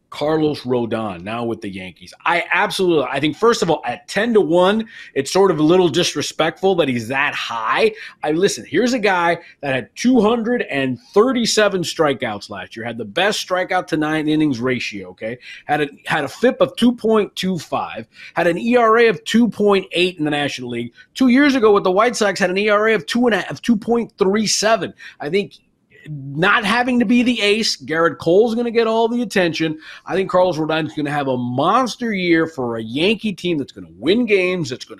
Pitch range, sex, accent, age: 145-215 Hz, male, American, 30-49